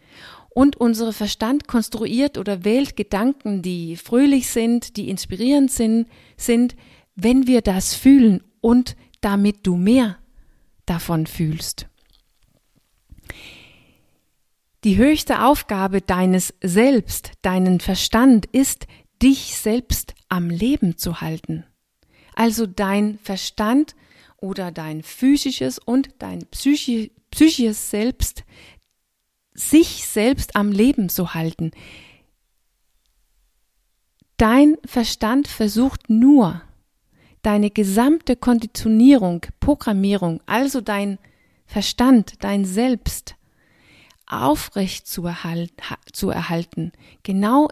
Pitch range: 190-255 Hz